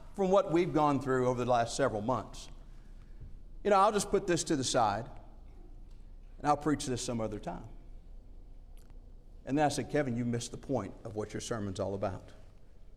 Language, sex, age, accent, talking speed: English, male, 50-69, American, 190 wpm